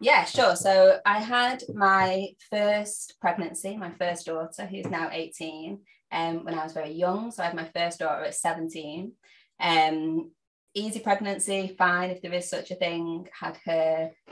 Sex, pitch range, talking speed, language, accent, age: female, 165-190 Hz, 170 wpm, English, British, 20-39